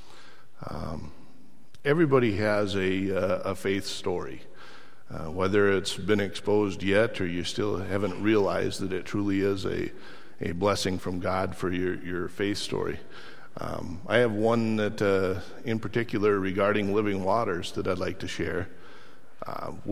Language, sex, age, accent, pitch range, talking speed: English, male, 50-69, American, 95-110 Hz, 150 wpm